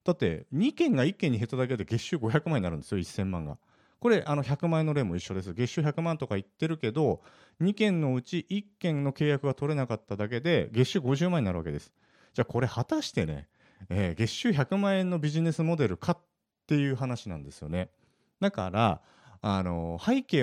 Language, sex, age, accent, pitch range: Japanese, male, 40-59, native, 95-160 Hz